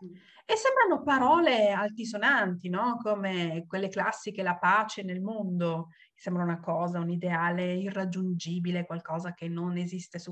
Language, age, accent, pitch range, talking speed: Italian, 40-59, native, 170-245 Hz, 135 wpm